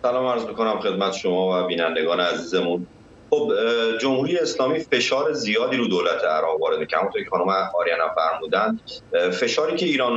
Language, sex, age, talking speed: Persian, male, 30-49, 160 wpm